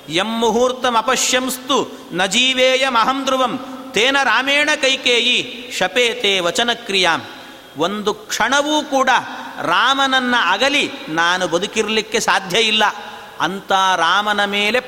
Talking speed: 90 wpm